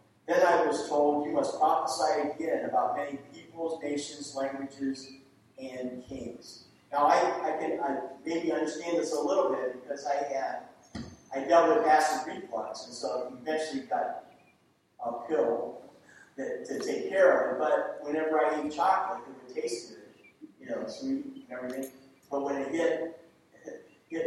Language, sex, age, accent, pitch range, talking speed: English, male, 40-59, American, 135-180 Hz, 160 wpm